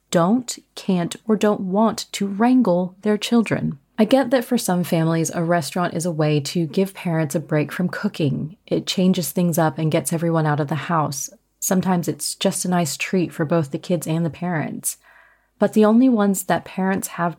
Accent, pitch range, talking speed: American, 165-210 Hz, 200 wpm